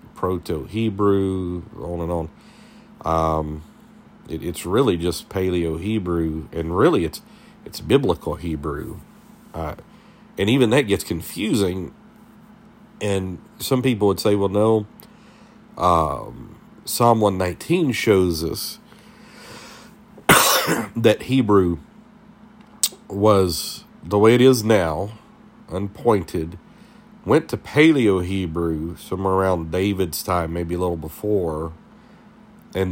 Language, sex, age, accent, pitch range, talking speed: English, male, 50-69, American, 85-120 Hz, 100 wpm